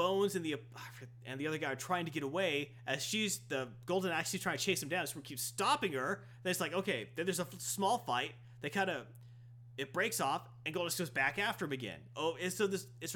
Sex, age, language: male, 30-49, English